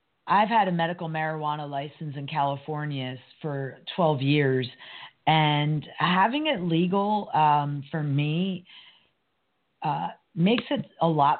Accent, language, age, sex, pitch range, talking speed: American, English, 40-59, female, 140-170 Hz, 120 wpm